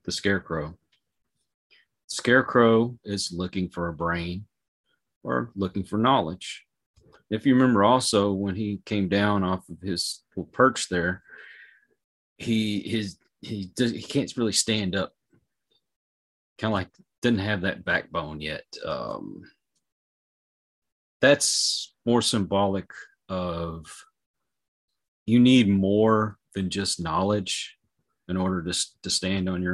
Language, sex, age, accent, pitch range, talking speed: English, male, 30-49, American, 90-110 Hz, 125 wpm